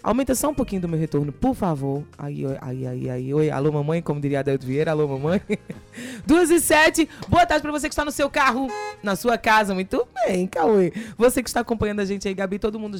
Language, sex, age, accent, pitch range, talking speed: Portuguese, female, 20-39, Brazilian, 155-210 Hz, 245 wpm